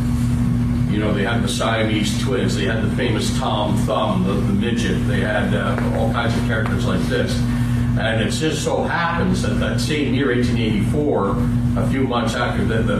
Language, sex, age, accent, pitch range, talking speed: English, male, 60-79, American, 115-120 Hz, 185 wpm